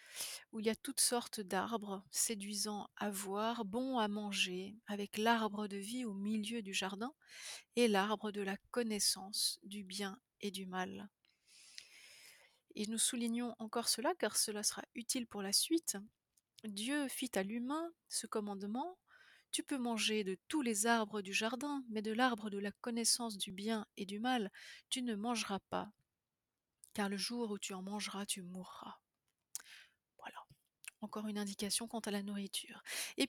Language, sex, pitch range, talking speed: French, female, 205-250 Hz, 160 wpm